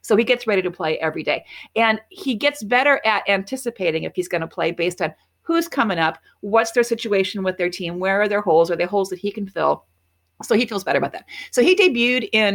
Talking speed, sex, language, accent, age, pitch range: 250 wpm, female, English, American, 50-69, 185-240 Hz